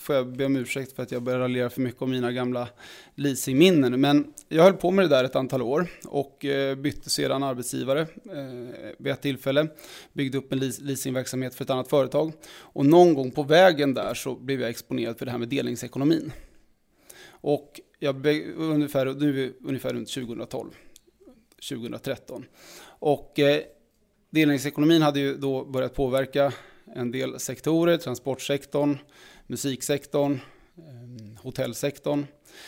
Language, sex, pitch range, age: English, male, 125-150 Hz, 20-39